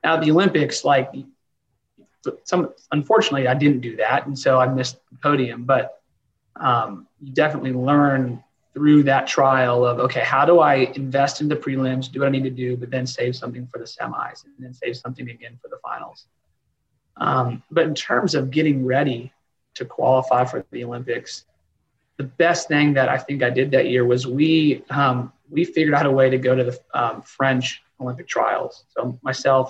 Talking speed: 190 wpm